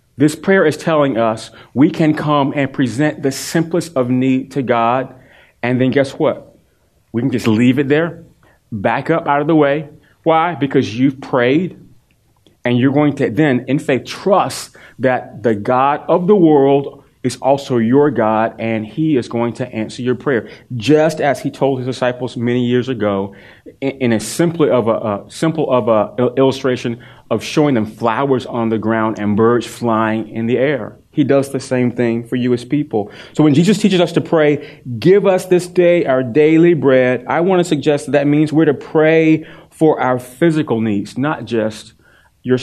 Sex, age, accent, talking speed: male, 30-49, American, 190 wpm